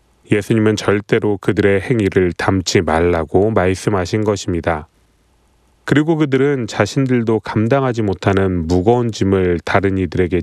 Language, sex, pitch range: Korean, male, 95-125 Hz